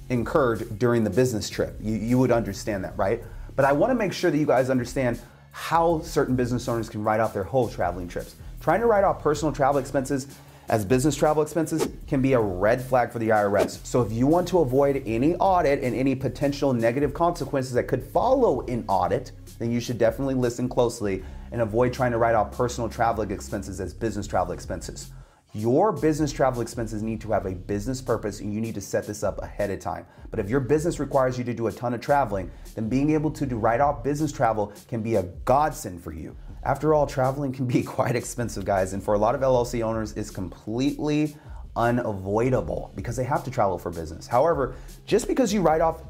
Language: English